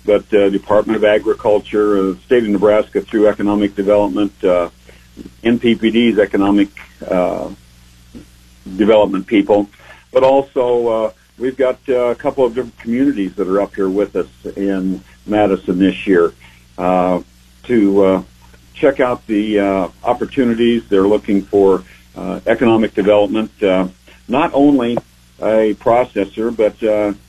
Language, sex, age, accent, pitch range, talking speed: English, male, 60-79, American, 95-115 Hz, 135 wpm